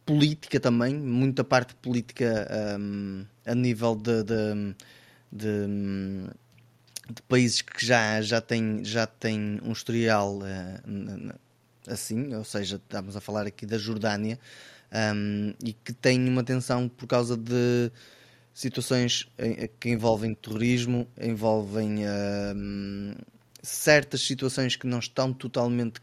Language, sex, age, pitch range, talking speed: Portuguese, male, 20-39, 110-130 Hz, 120 wpm